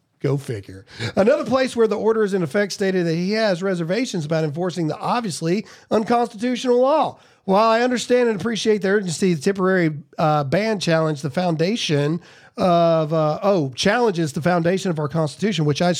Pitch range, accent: 160-215 Hz, American